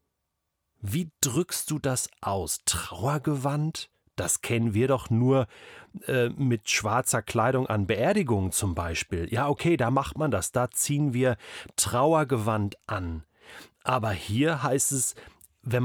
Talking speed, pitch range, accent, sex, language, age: 135 wpm, 110-145 Hz, German, male, German, 40-59